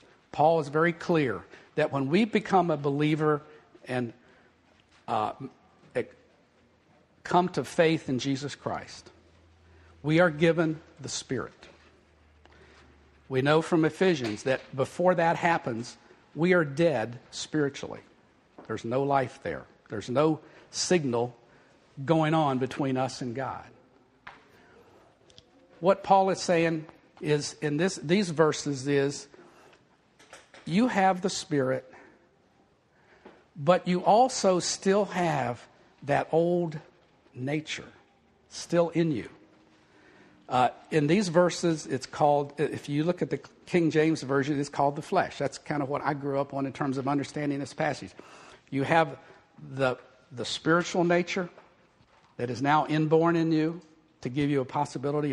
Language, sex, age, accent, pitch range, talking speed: English, male, 50-69, American, 135-170 Hz, 130 wpm